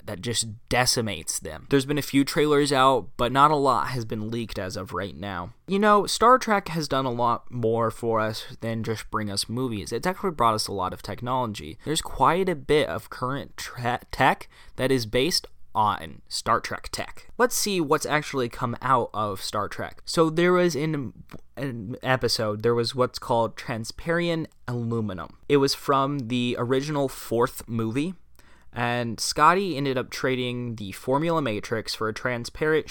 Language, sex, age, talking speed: English, male, 20-39, 175 wpm